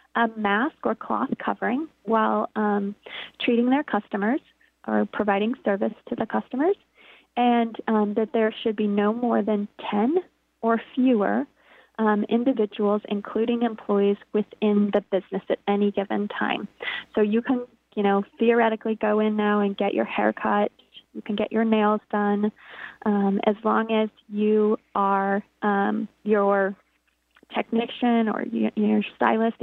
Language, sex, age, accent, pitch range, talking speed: English, female, 20-39, American, 205-235 Hz, 145 wpm